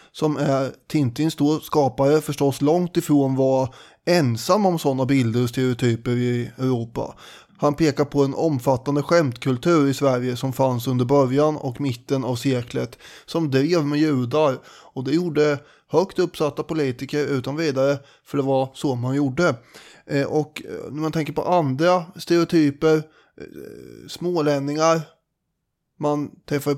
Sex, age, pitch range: male, 20-39, 135-160 Hz